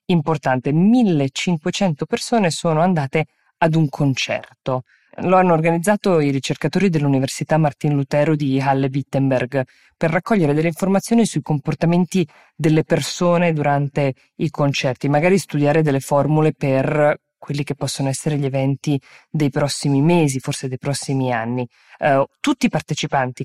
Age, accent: 20-39, native